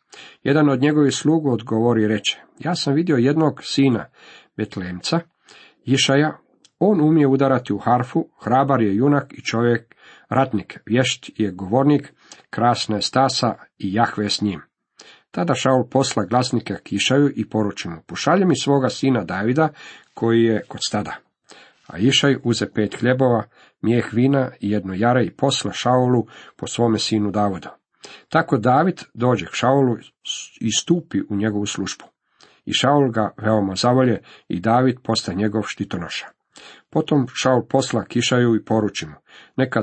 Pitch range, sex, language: 105-135 Hz, male, Croatian